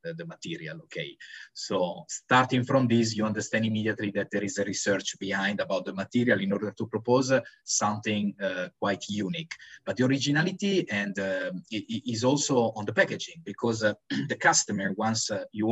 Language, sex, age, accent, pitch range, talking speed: English, male, 20-39, Italian, 105-135 Hz, 170 wpm